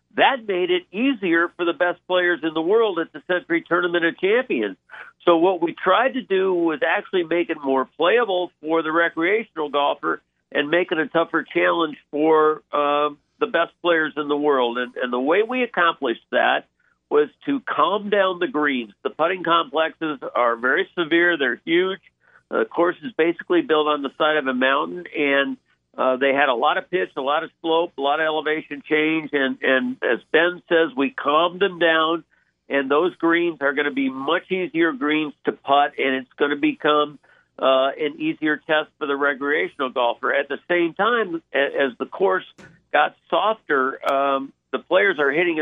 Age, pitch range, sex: 50-69, 145-175 Hz, male